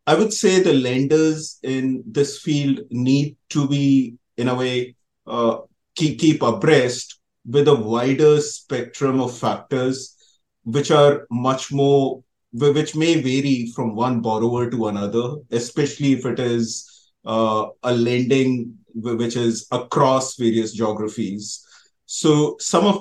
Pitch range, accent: 120-145 Hz, Indian